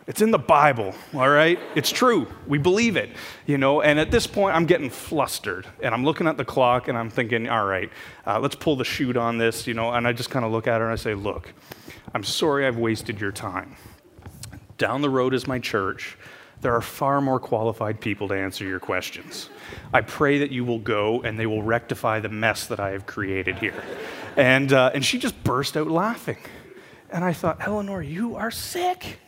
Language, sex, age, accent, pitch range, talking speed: English, male, 30-49, American, 115-160 Hz, 215 wpm